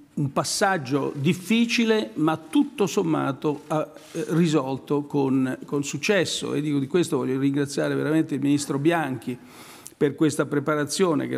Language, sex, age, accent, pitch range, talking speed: Italian, male, 50-69, native, 145-175 Hz, 115 wpm